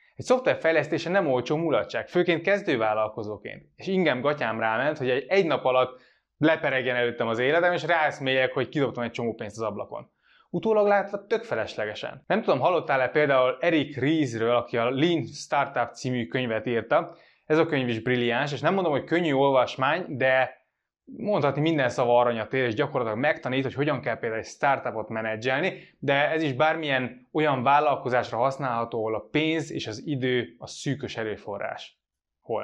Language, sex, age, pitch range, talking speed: Hungarian, male, 20-39, 120-160 Hz, 165 wpm